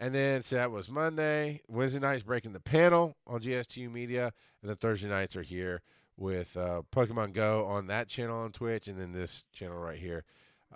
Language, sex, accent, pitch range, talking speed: English, male, American, 100-130 Hz, 195 wpm